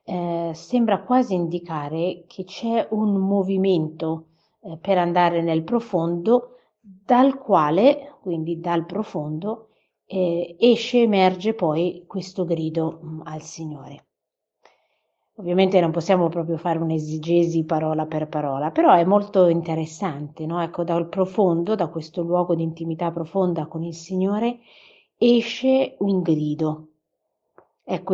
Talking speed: 120 wpm